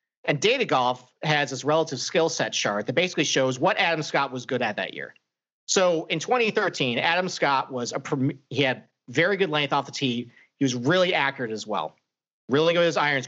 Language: English